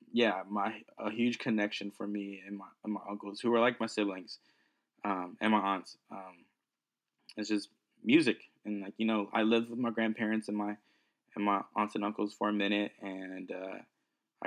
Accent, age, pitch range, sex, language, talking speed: American, 20-39, 100-115 Hz, male, English, 190 wpm